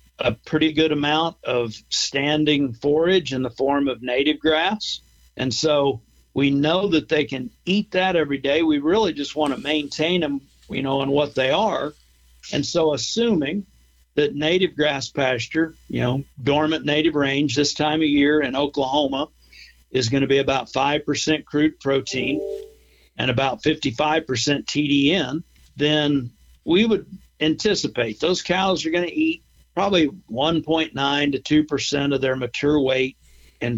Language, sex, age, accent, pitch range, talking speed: English, male, 50-69, American, 130-160 Hz, 155 wpm